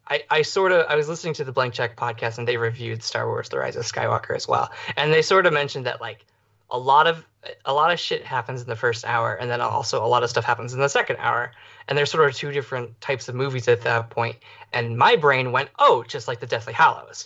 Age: 20-39